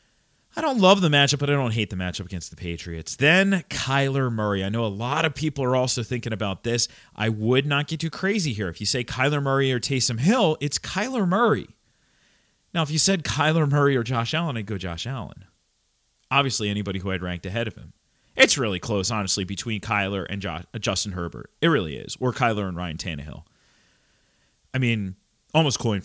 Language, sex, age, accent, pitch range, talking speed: English, male, 30-49, American, 105-145 Hz, 205 wpm